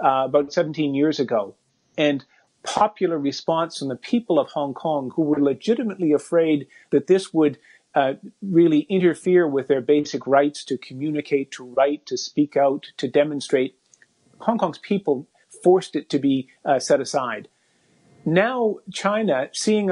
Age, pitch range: 40-59, 140-170 Hz